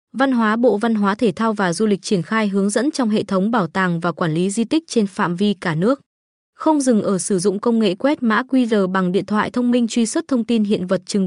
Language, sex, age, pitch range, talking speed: Vietnamese, female, 20-39, 195-245 Hz, 270 wpm